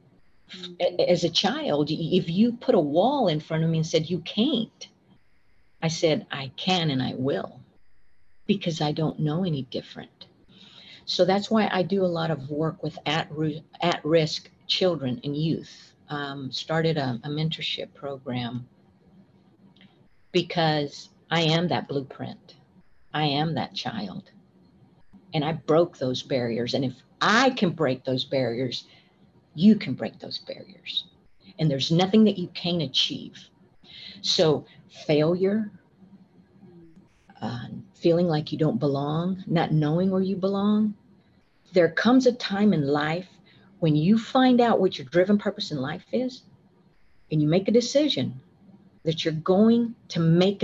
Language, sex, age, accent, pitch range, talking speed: English, female, 50-69, American, 150-190 Hz, 150 wpm